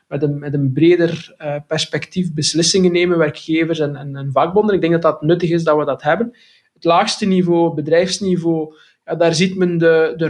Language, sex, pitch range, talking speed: Dutch, male, 155-180 Hz, 185 wpm